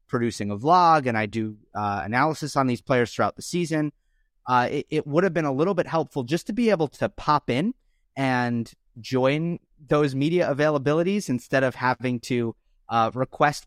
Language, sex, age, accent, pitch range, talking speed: English, male, 30-49, American, 110-150 Hz, 185 wpm